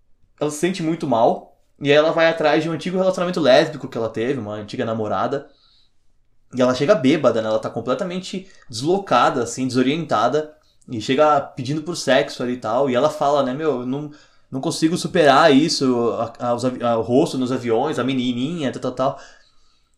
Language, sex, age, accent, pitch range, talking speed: Portuguese, male, 20-39, Brazilian, 120-165 Hz, 185 wpm